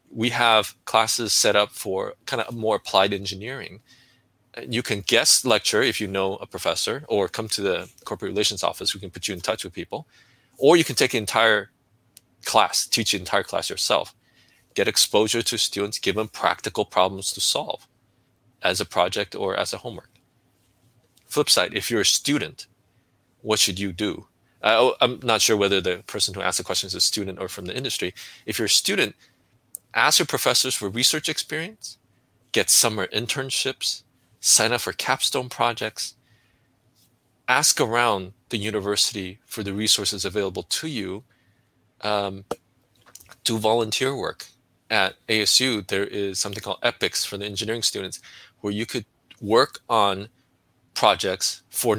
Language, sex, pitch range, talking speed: English, male, 100-125 Hz, 165 wpm